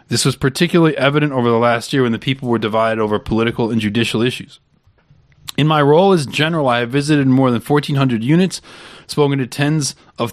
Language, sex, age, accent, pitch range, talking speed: English, male, 30-49, American, 120-150 Hz, 200 wpm